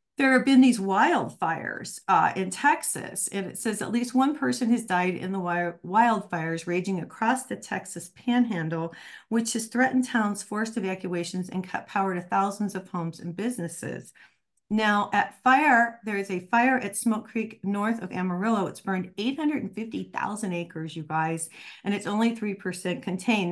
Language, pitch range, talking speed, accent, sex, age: English, 175-225 Hz, 165 wpm, American, female, 40-59